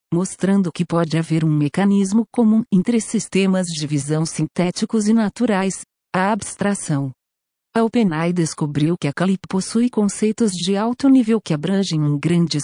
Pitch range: 155-215 Hz